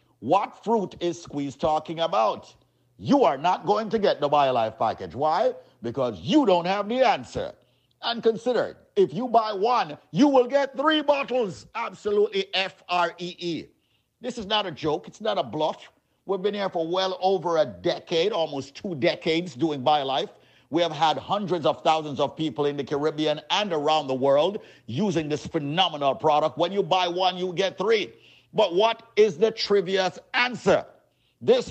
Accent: American